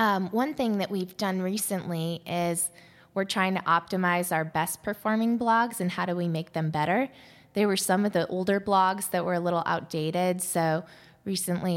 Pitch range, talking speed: 155-185 Hz, 190 wpm